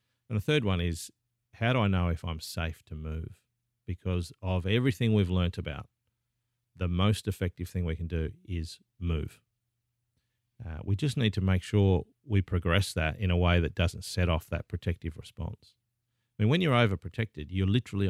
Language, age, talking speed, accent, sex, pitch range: English, 50-69, 185 wpm, Australian, male, 90-120 Hz